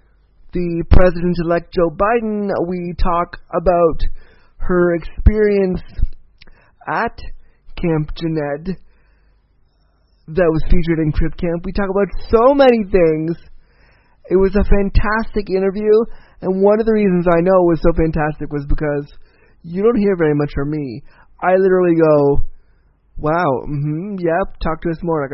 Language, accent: English, American